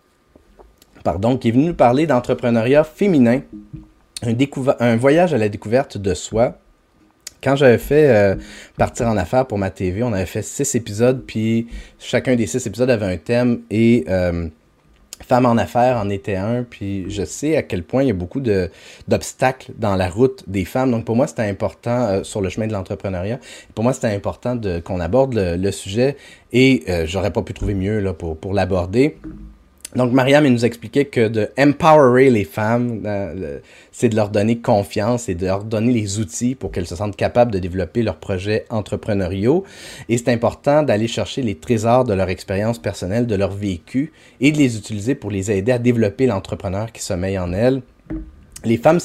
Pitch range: 100-125 Hz